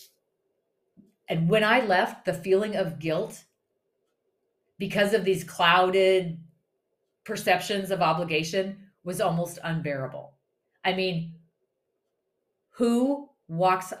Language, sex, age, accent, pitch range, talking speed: English, female, 40-59, American, 165-225 Hz, 95 wpm